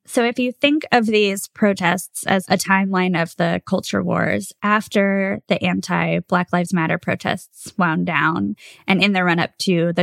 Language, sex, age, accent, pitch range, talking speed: English, female, 20-39, American, 165-195 Hz, 175 wpm